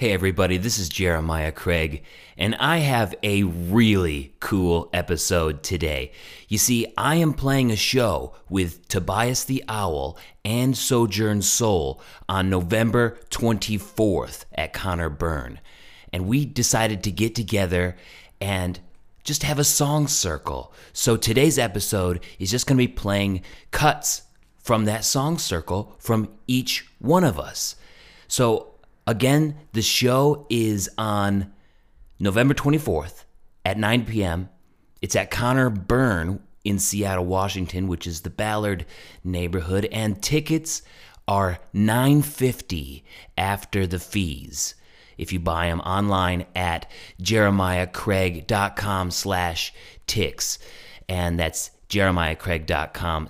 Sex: male